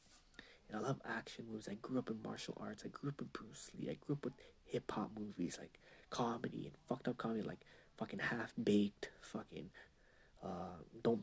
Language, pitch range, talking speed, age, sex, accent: English, 100-130 Hz, 190 wpm, 20-39, male, American